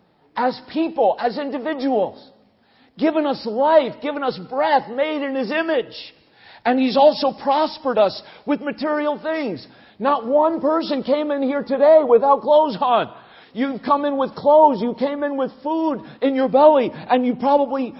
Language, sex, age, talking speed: English, male, 50-69, 160 wpm